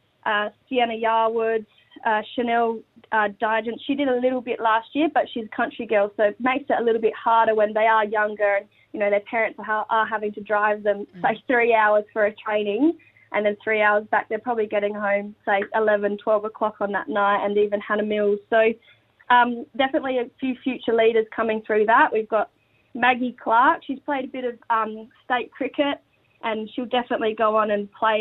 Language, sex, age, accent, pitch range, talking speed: English, female, 20-39, Australian, 210-235 Hz, 205 wpm